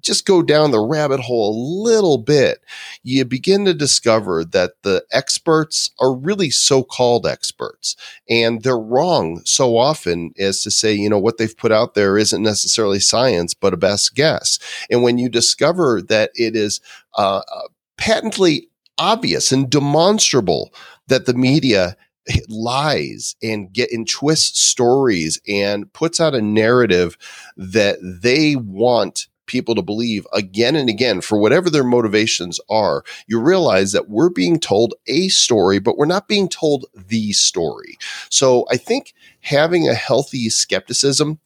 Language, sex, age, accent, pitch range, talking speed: English, male, 40-59, American, 100-145 Hz, 150 wpm